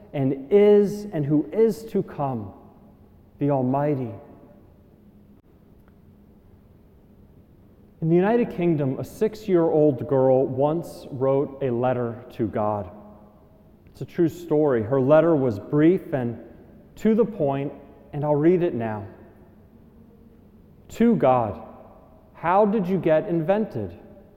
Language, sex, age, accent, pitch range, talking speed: English, male, 40-59, American, 120-165 Hz, 115 wpm